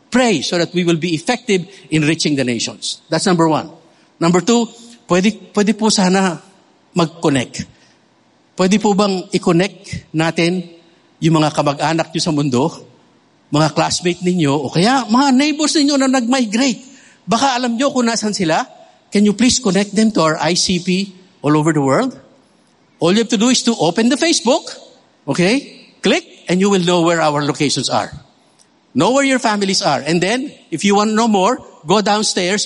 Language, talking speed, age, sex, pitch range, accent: English, 175 wpm, 50-69, male, 160-215 Hz, Filipino